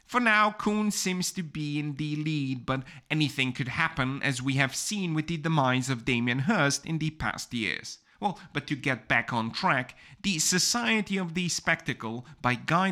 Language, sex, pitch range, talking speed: English, male, 125-170 Hz, 190 wpm